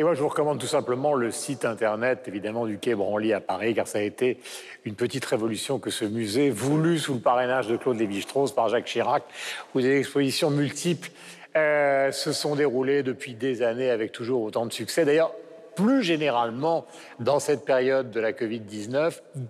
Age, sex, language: 50-69, male, French